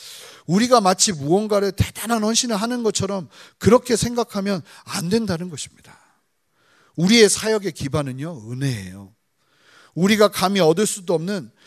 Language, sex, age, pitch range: Korean, male, 40-59, 155-215 Hz